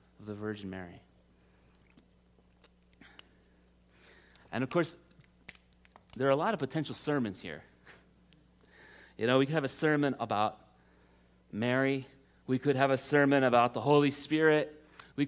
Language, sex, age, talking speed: English, male, 30-49, 135 wpm